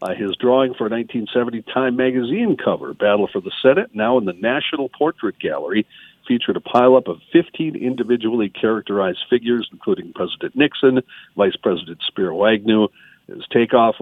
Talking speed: 150 wpm